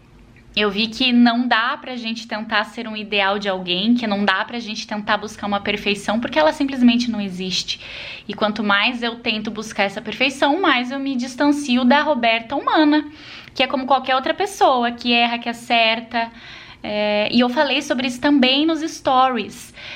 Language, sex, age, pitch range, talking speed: Portuguese, female, 10-29, 225-275 Hz, 190 wpm